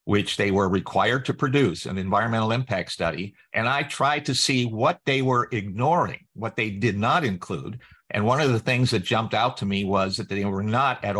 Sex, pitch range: male, 100-130 Hz